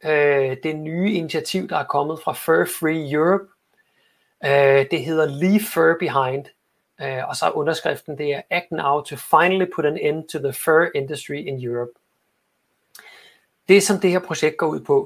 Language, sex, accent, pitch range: Danish, male, native, 140-185 Hz